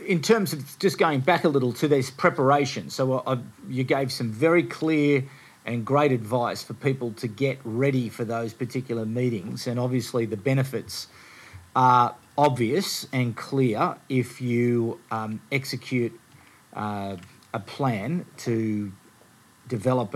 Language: English